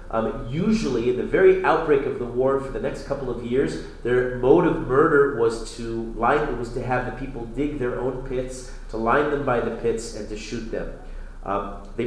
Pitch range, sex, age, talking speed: 105-135 Hz, male, 40-59, 205 wpm